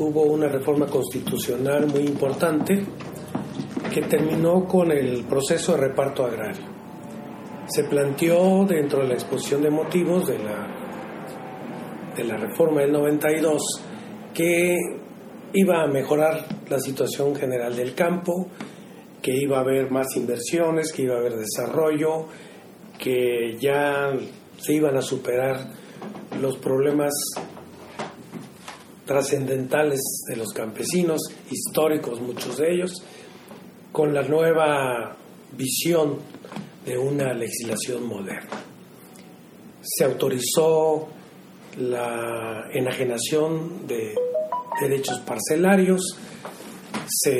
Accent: Mexican